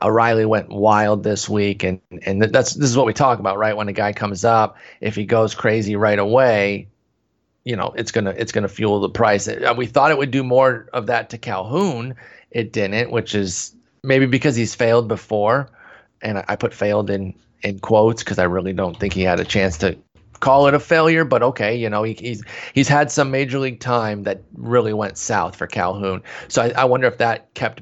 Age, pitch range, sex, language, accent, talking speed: 30-49, 100-130 Hz, male, English, American, 215 wpm